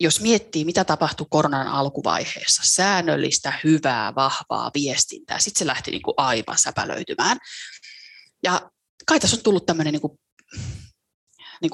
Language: Finnish